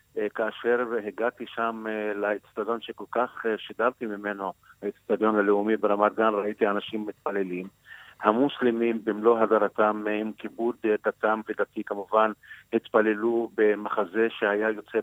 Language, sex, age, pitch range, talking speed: Hebrew, male, 50-69, 105-115 Hz, 110 wpm